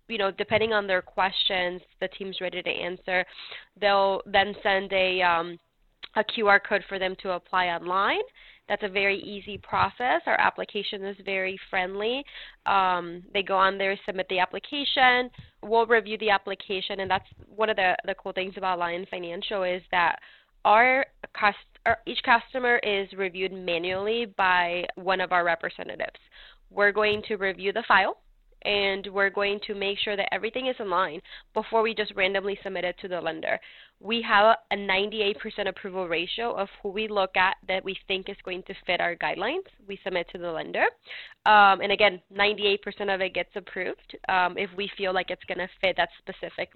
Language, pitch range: English, 185-210 Hz